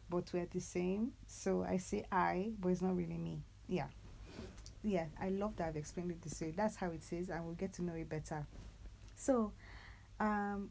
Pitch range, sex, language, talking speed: 155-185 Hz, female, English, 200 wpm